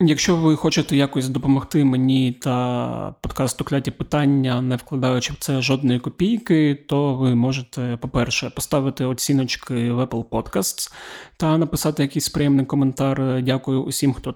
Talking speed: 140 wpm